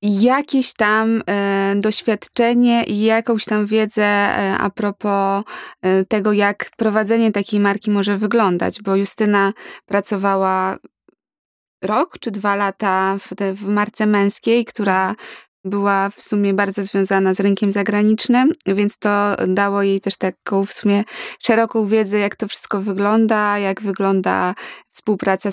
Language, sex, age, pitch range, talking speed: Polish, female, 20-39, 200-220 Hz, 120 wpm